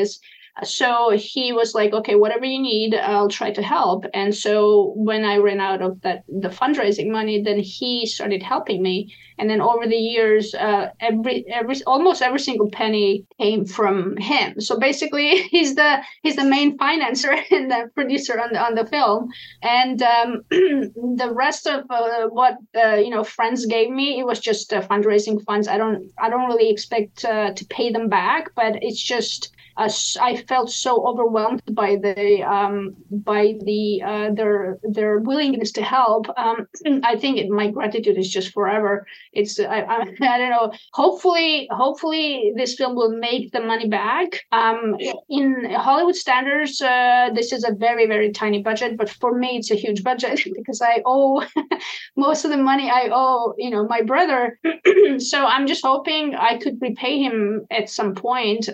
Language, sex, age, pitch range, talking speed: English, female, 20-39, 210-255 Hz, 180 wpm